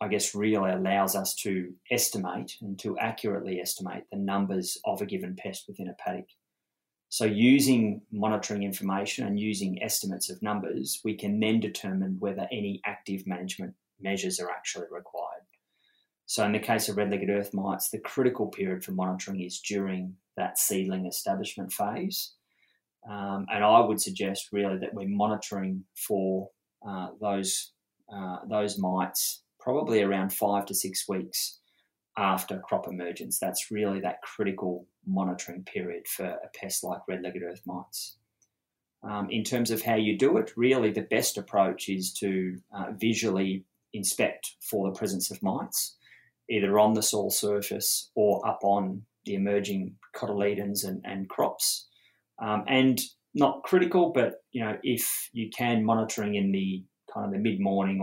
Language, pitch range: English, 95-105 Hz